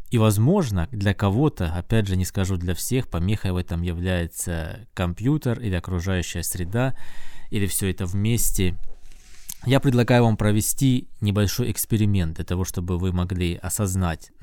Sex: male